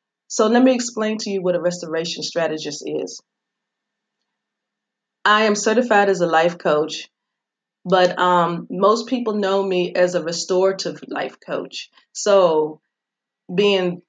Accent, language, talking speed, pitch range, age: American, English, 130 wpm, 170-205 Hz, 30-49